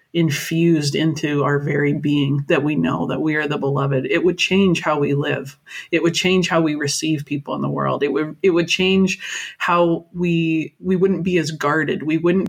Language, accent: English, American